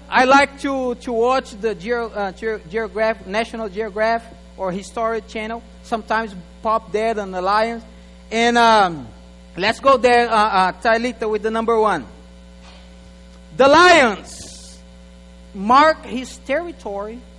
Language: English